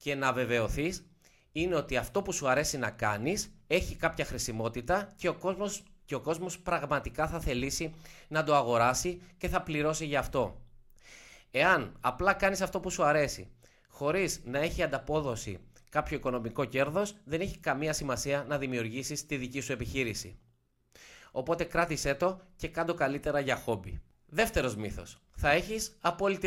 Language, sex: Greek, male